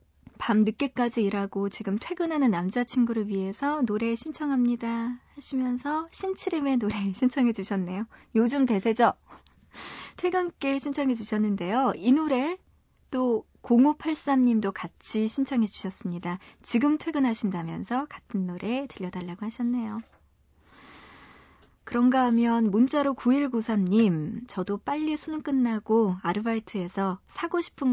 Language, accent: Korean, native